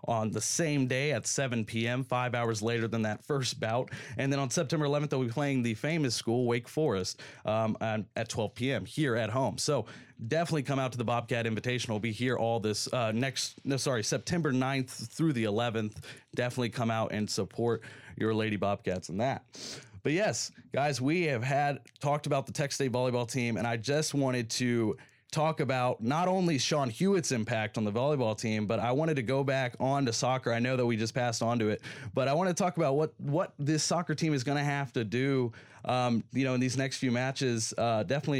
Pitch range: 115-145 Hz